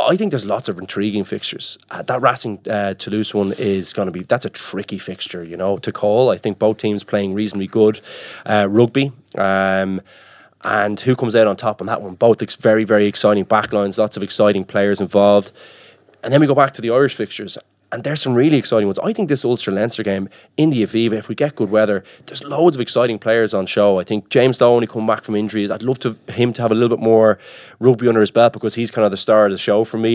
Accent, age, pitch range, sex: Irish, 20-39, 105-120 Hz, male